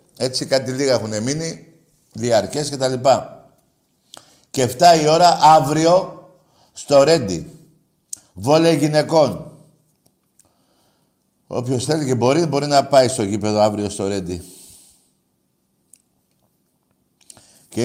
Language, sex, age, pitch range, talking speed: Greek, male, 60-79, 110-150 Hz, 105 wpm